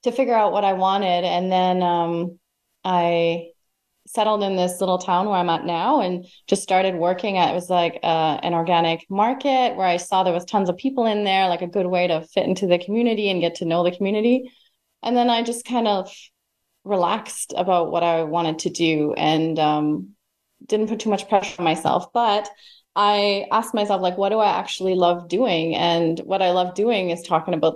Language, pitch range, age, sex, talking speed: English, 175-210 Hz, 20-39, female, 210 wpm